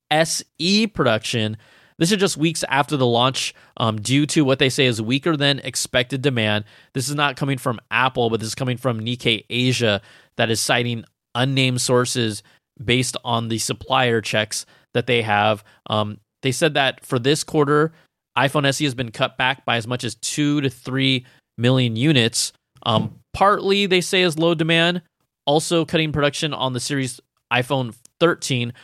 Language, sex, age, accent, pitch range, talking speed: English, male, 20-39, American, 115-140 Hz, 175 wpm